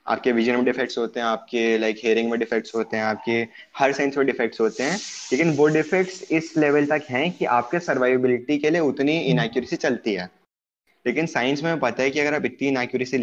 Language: Hindi